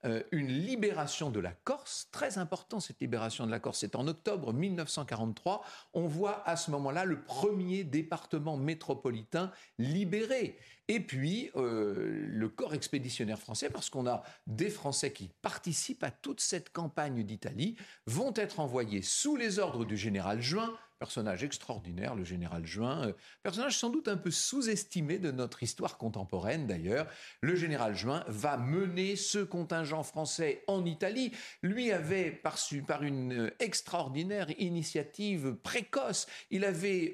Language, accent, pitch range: French, French, 125-195 Hz